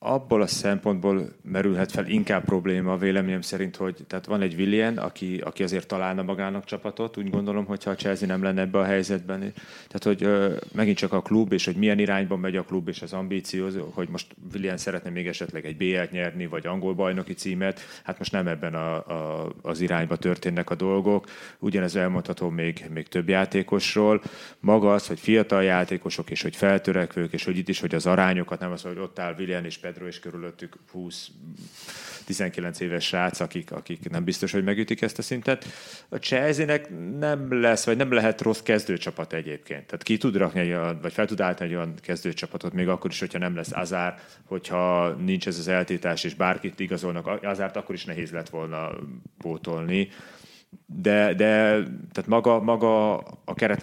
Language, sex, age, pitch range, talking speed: Hungarian, male, 30-49, 90-105 Hz, 180 wpm